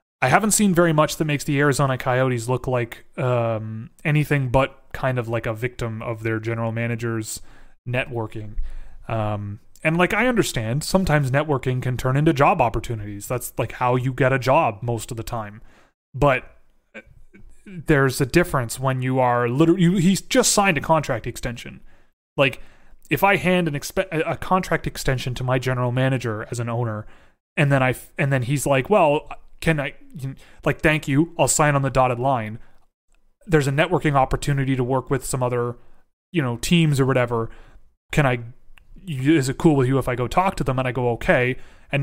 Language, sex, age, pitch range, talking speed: English, male, 30-49, 120-150 Hz, 185 wpm